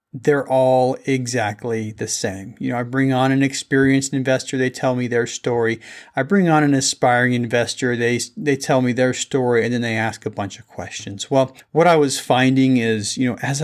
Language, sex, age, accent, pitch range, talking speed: English, male, 40-59, American, 115-135 Hz, 205 wpm